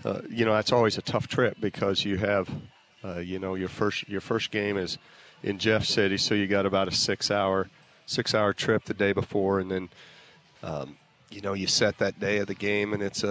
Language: English